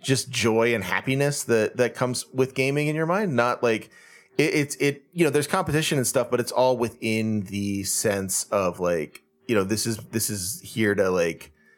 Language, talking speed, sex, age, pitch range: English, 205 wpm, male, 30-49, 95-135 Hz